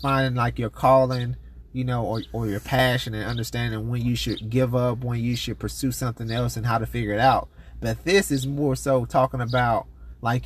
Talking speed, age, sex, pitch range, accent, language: 210 wpm, 30-49, male, 110-135 Hz, American, English